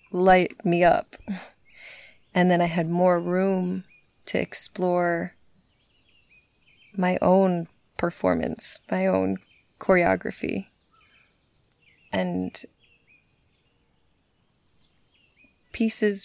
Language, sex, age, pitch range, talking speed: English, female, 20-39, 165-185 Hz, 70 wpm